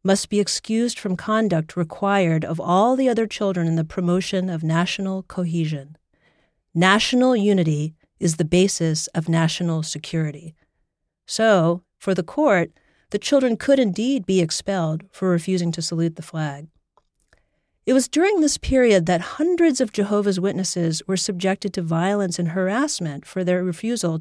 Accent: American